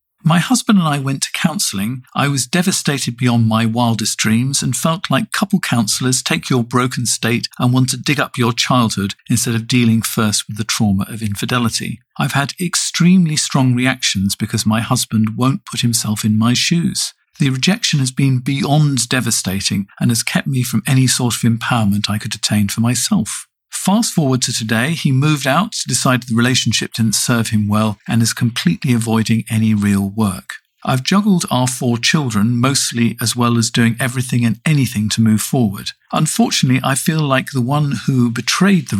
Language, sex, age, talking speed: English, male, 50-69, 185 wpm